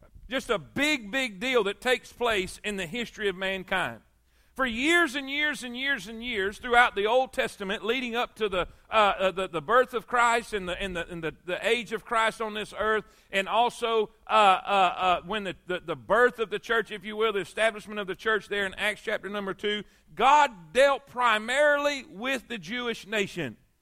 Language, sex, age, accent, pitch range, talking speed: English, male, 40-59, American, 210-255 Hz, 210 wpm